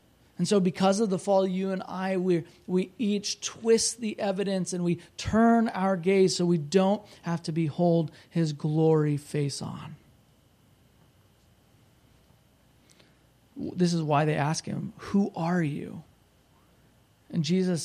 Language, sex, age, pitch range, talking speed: English, male, 30-49, 160-220 Hz, 135 wpm